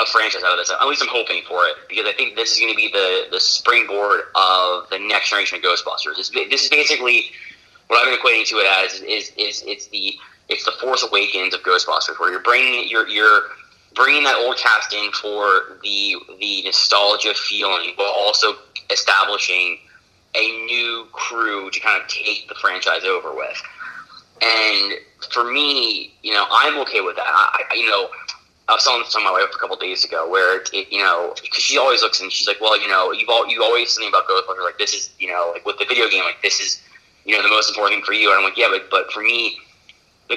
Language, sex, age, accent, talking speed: English, male, 30-49, American, 225 wpm